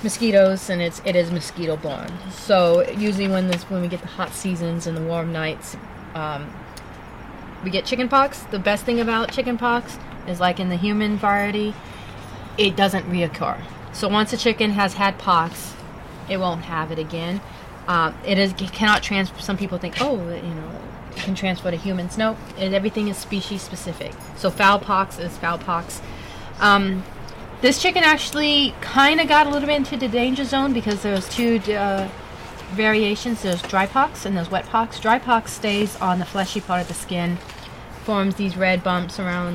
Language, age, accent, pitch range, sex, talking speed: English, 30-49, American, 175-215 Hz, female, 185 wpm